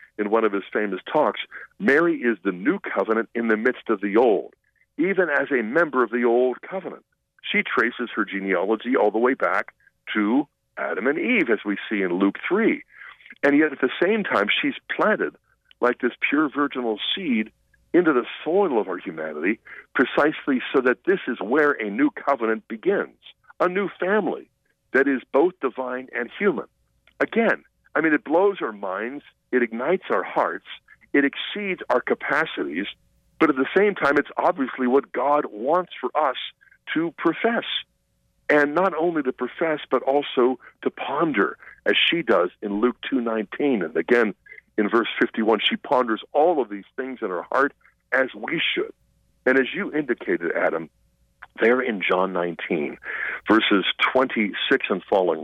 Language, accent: English, American